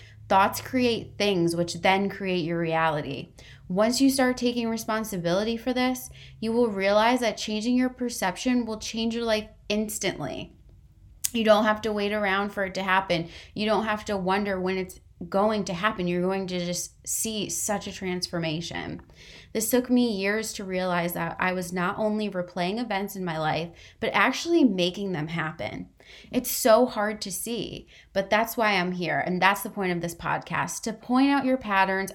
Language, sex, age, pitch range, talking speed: English, female, 20-39, 175-225 Hz, 185 wpm